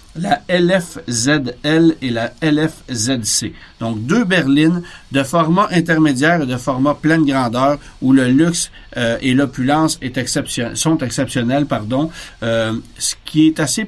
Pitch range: 115-145 Hz